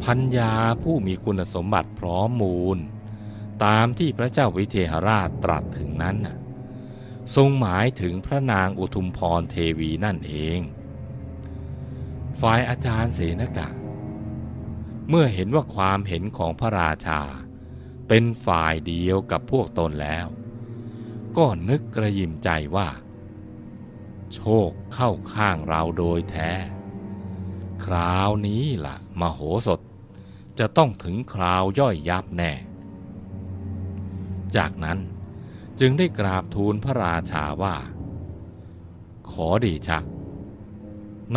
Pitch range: 85-110 Hz